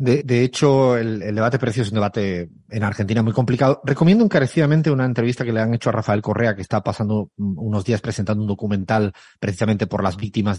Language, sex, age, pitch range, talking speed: Spanish, male, 30-49, 110-155 Hz, 210 wpm